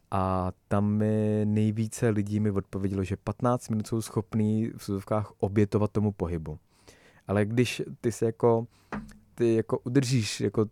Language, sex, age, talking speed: Czech, male, 20-39, 145 wpm